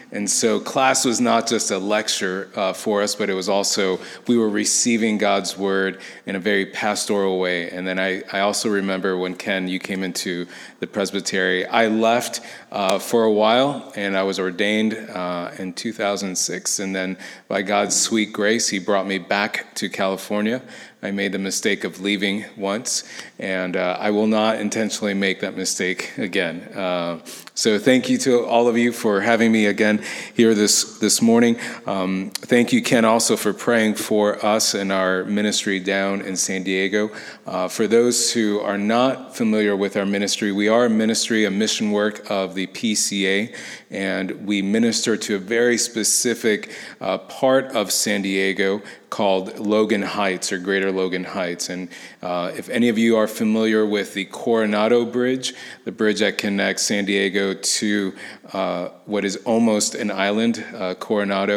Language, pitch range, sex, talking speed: English, 95-110 Hz, male, 175 wpm